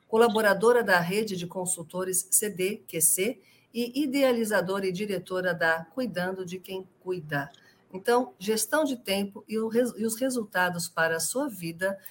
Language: Portuguese